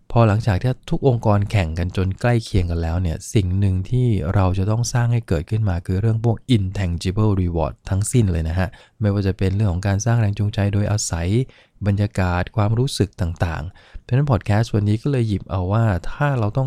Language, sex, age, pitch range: English, male, 20-39, 95-115 Hz